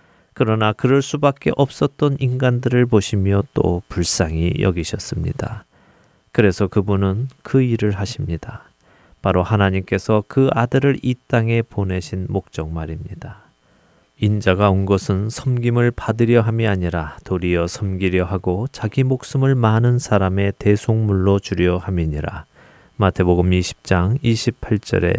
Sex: male